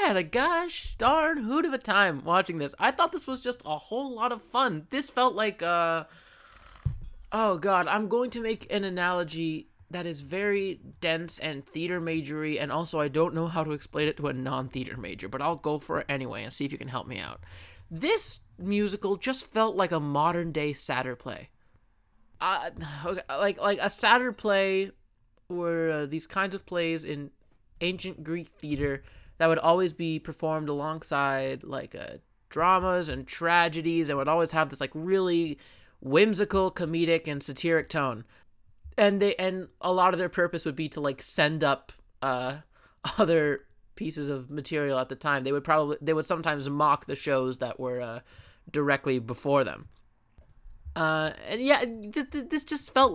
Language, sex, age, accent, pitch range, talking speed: English, male, 20-39, American, 135-185 Hz, 180 wpm